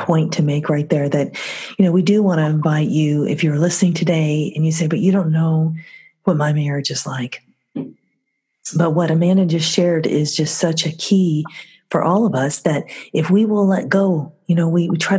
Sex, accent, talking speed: female, American, 215 wpm